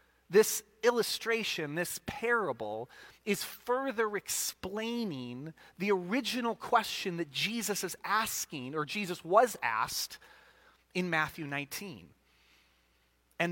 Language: English